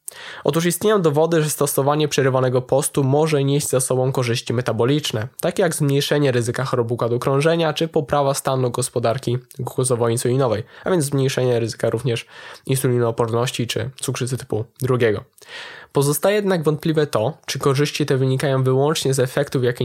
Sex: male